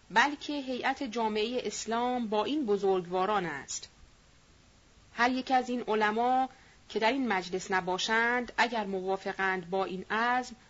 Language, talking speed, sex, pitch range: Persian, 130 wpm, female, 190-255 Hz